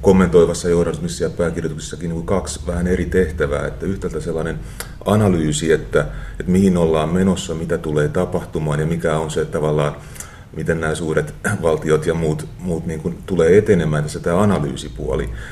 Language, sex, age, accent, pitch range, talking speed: Finnish, male, 30-49, native, 80-90 Hz, 160 wpm